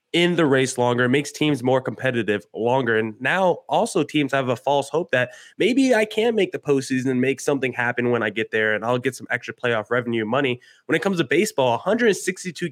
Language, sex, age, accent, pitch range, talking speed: English, male, 20-39, American, 125-160 Hz, 215 wpm